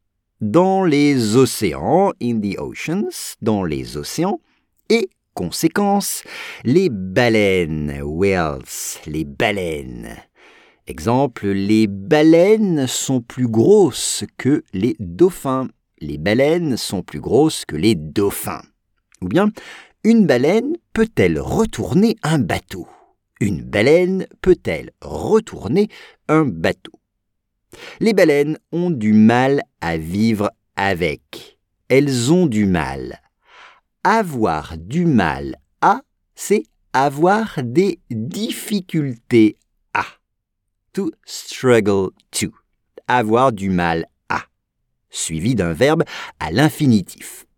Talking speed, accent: 100 wpm, French